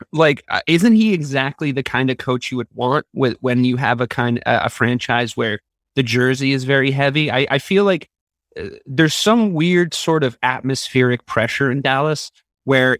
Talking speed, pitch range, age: 185 wpm, 115-140 Hz, 30-49